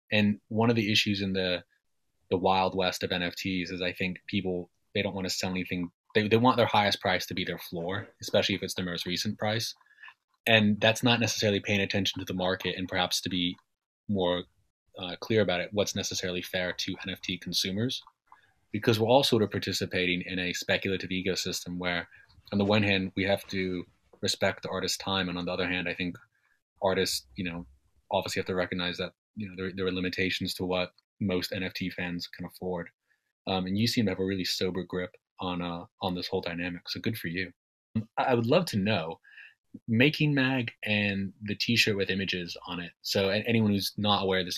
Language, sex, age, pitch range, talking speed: English, male, 20-39, 90-105 Hz, 210 wpm